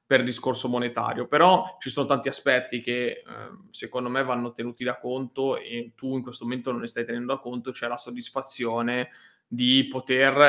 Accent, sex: native, male